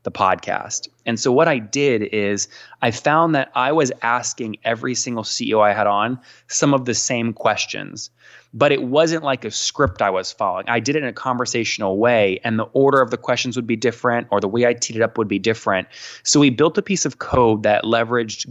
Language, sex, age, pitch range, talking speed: English, male, 20-39, 110-130 Hz, 225 wpm